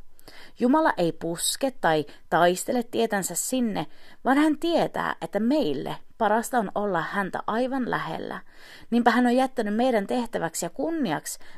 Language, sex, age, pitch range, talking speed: Finnish, female, 30-49, 165-275 Hz, 135 wpm